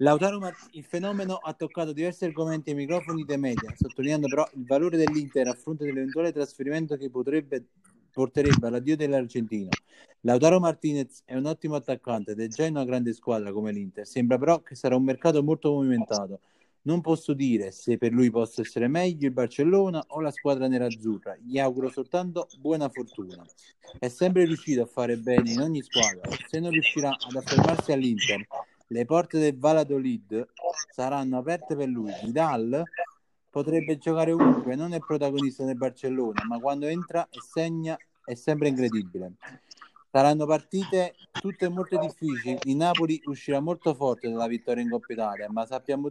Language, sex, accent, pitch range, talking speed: Italian, male, native, 125-160 Hz, 165 wpm